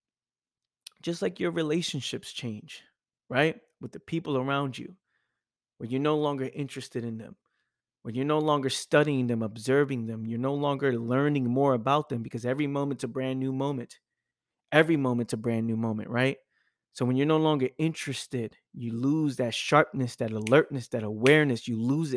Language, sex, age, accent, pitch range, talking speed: English, male, 30-49, American, 125-160 Hz, 170 wpm